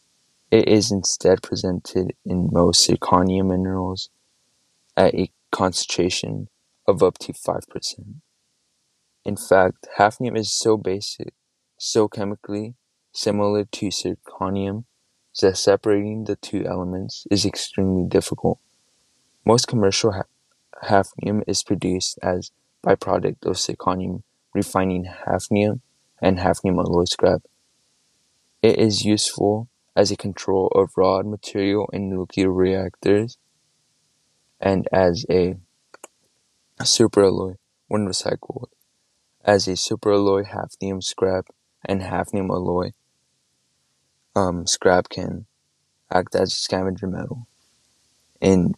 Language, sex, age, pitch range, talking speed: English, male, 20-39, 95-105 Hz, 105 wpm